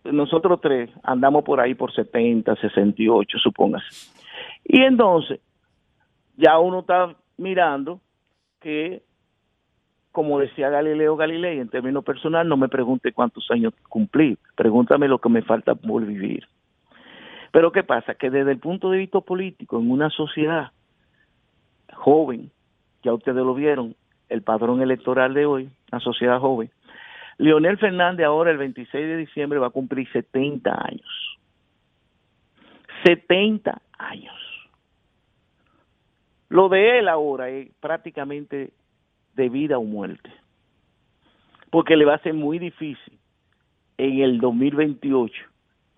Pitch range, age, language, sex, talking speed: 130-165 Hz, 50-69, Spanish, male, 125 wpm